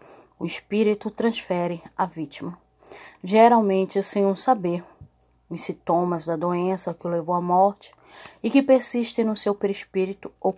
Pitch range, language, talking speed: 175-210 Hz, Portuguese, 140 wpm